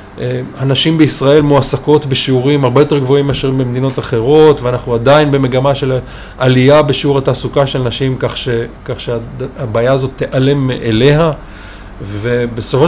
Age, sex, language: 20-39, male, Hebrew